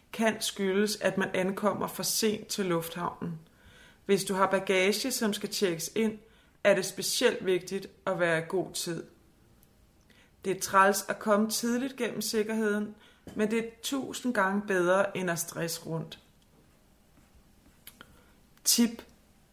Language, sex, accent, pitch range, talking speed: Danish, female, native, 185-215 Hz, 140 wpm